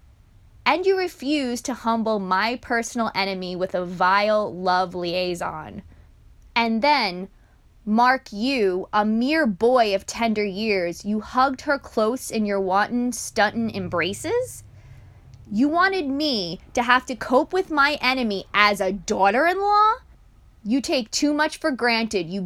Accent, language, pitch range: American, English, 200-265 Hz